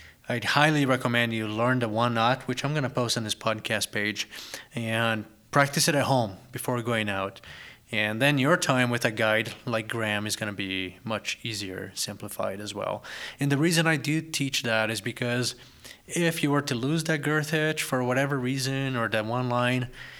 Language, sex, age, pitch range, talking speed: English, male, 30-49, 105-130 Hz, 200 wpm